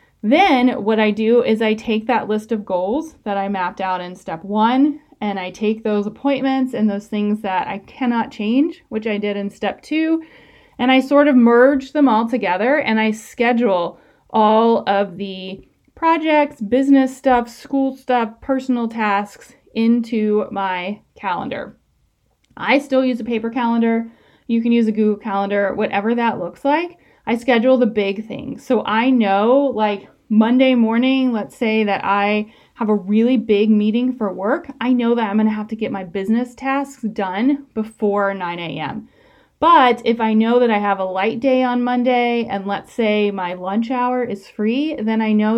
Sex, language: female, English